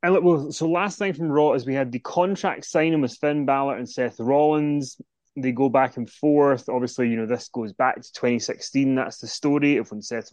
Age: 20-39